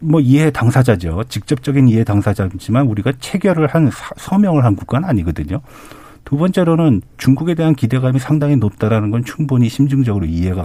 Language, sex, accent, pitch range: Korean, male, native, 100-140 Hz